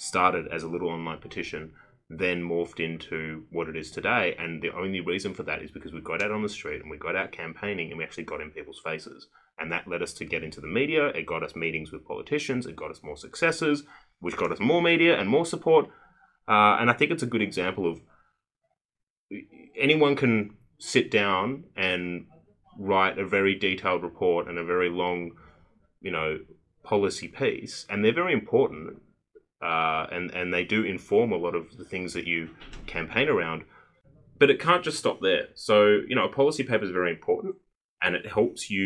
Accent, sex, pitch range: Australian, male, 85-125 Hz